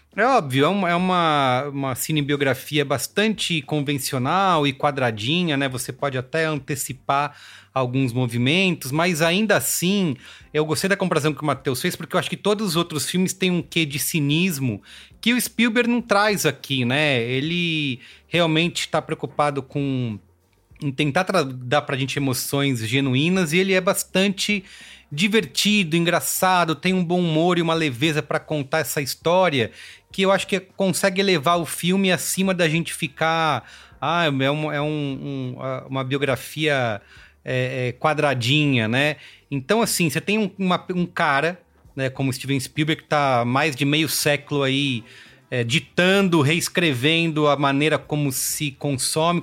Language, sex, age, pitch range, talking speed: English, male, 30-49, 135-175 Hz, 145 wpm